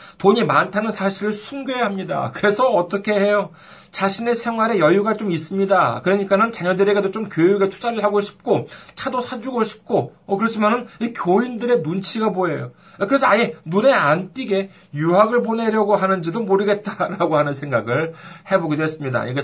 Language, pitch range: Korean, 145-205 Hz